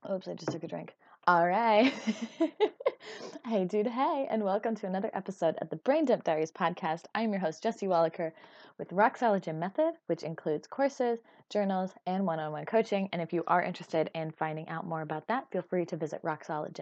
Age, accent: 20-39, American